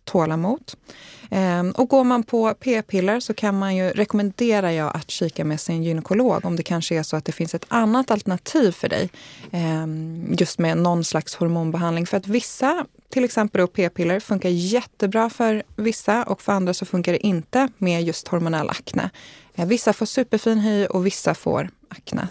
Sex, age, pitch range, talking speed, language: female, 20-39, 175-230 Hz, 170 wpm, Swedish